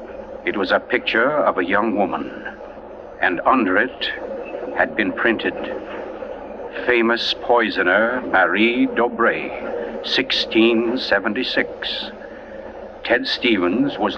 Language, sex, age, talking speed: English, male, 60-79, 95 wpm